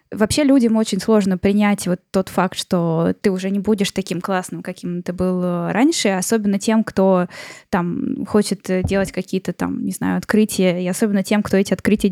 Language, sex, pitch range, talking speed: Russian, female, 185-220 Hz, 180 wpm